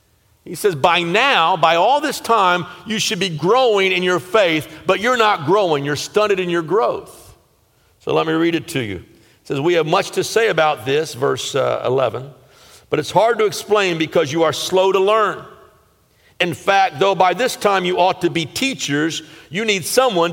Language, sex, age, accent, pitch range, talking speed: English, male, 50-69, American, 175-245 Hz, 200 wpm